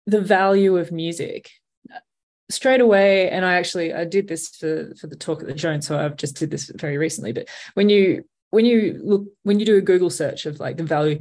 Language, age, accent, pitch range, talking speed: English, 20-39, Australian, 150-180 Hz, 230 wpm